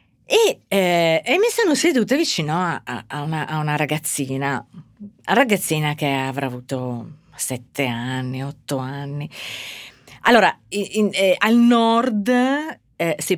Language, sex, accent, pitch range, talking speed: Italian, female, native, 135-200 Hz, 140 wpm